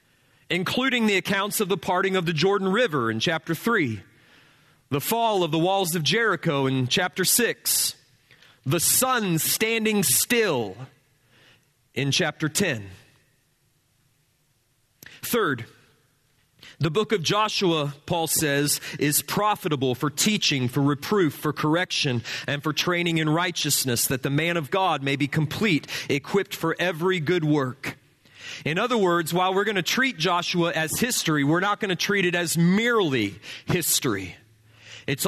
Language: English